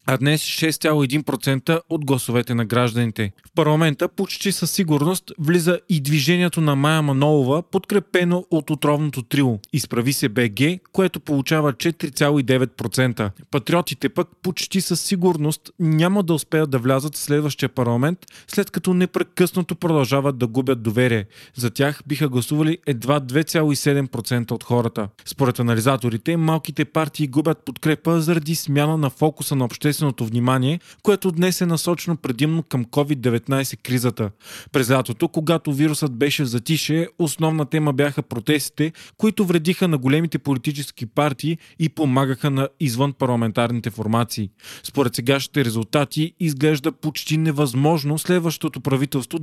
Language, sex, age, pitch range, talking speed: Bulgarian, male, 30-49, 130-160 Hz, 130 wpm